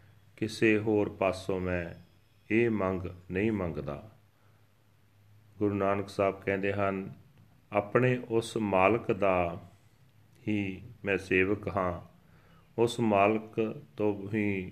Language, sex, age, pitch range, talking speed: Punjabi, male, 40-59, 95-115 Hz, 100 wpm